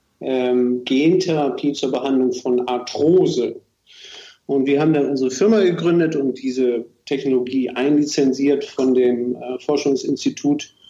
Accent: German